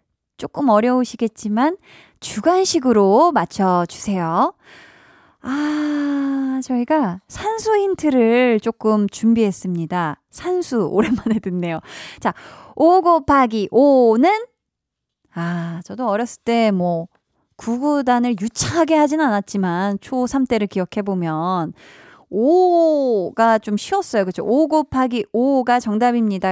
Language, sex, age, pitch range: Korean, female, 20-39, 200-285 Hz